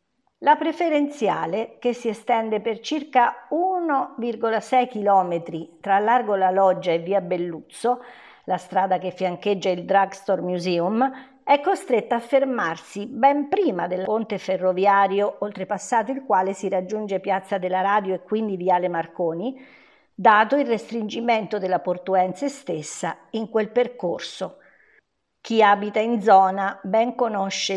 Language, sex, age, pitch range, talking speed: Italian, female, 50-69, 190-245 Hz, 130 wpm